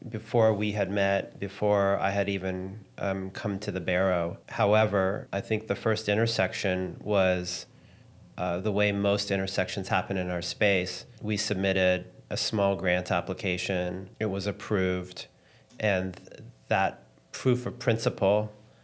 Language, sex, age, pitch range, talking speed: English, male, 30-49, 95-110 Hz, 135 wpm